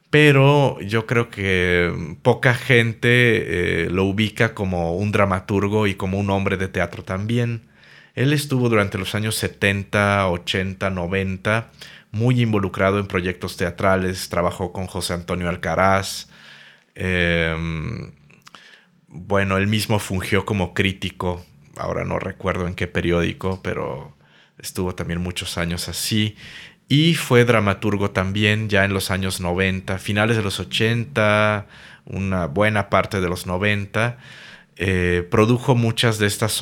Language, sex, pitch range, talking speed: Spanish, male, 90-110 Hz, 130 wpm